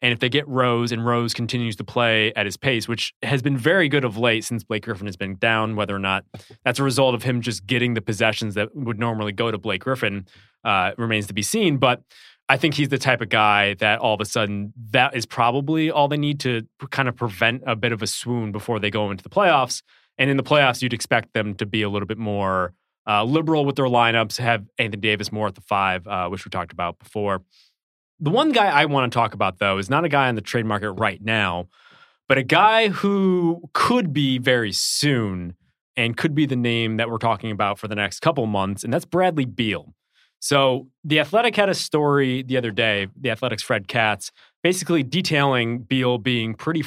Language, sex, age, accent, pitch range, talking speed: English, male, 20-39, American, 105-135 Hz, 230 wpm